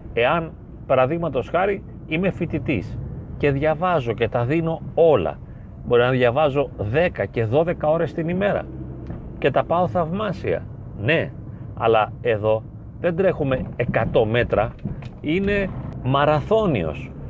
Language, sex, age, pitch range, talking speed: Greek, male, 40-59, 120-160 Hz, 115 wpm